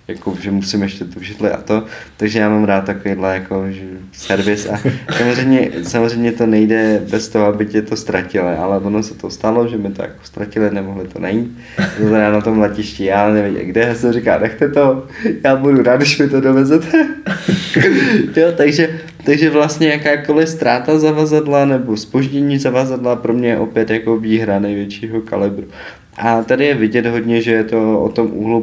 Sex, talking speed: male, 180 wpm